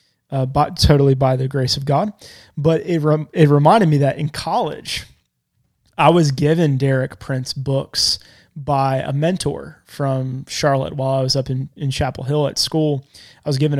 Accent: American